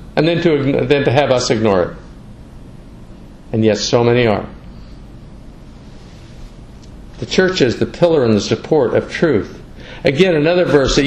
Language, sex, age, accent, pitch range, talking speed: English, male, 50-69, American, 130-195 Hz, 150 wpm